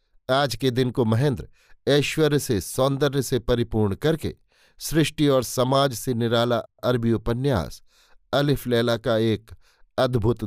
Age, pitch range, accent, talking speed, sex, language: 50-69, 110-135 Hz, native, 130 wpm, male, Hindi